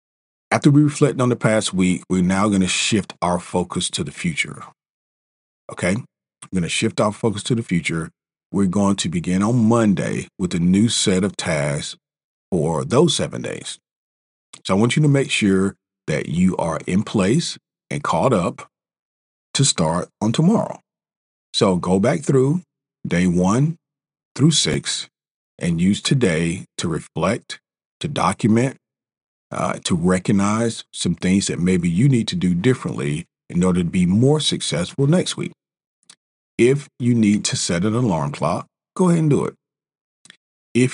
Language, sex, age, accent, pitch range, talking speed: English, male, 40-59, American, 90-145 Hz, 165 wpm